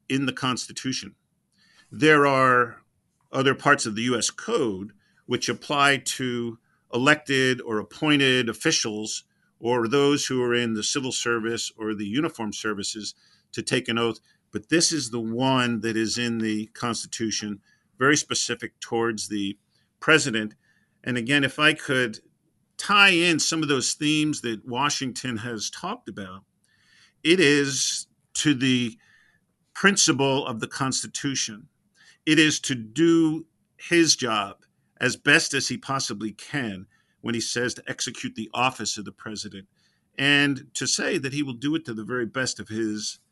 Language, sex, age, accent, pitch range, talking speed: English, male, 50-69, American, 110-140 Hz, 150 wpm